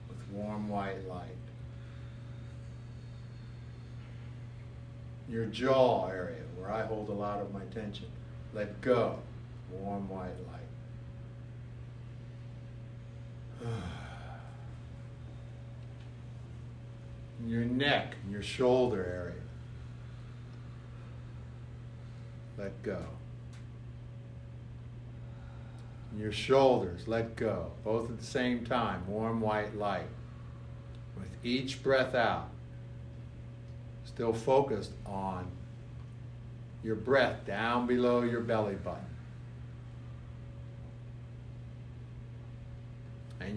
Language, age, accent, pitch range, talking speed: English, 60-79, American, 110-120 Hz, 75 wpm